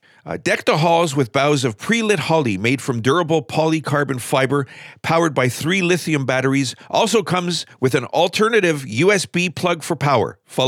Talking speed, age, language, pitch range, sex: 165 wpm, 50-69, English, 125-175 Hz, male